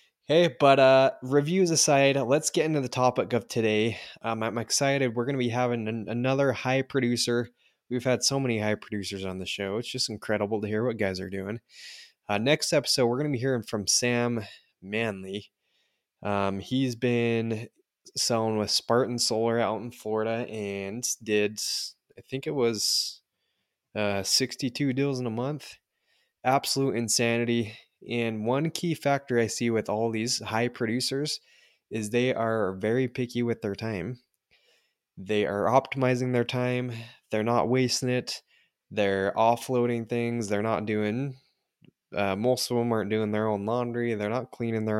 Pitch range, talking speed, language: 110-130 Hz, 165 wpm, English